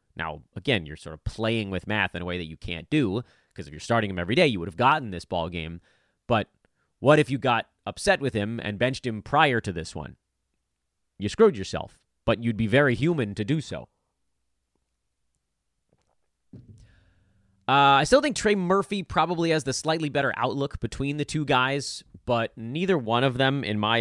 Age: 30-49